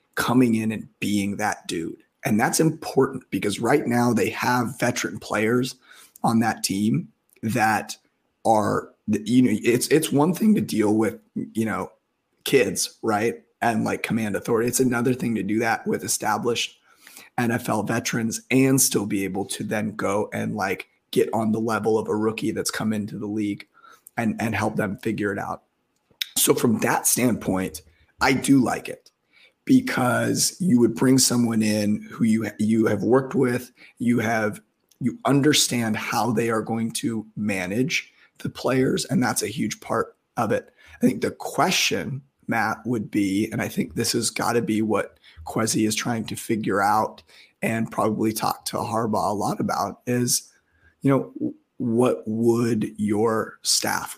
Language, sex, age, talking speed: English, male, 30-49, 170 wpm